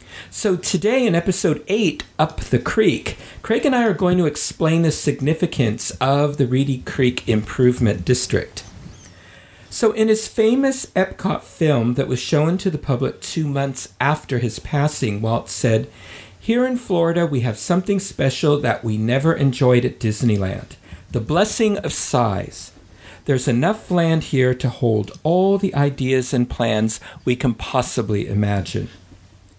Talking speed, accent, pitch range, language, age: 150 wpm, American, 115-160 Hz, English, 50-69